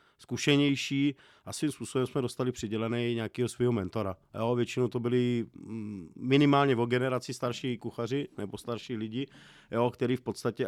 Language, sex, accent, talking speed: Czech, male, native, 155 wpm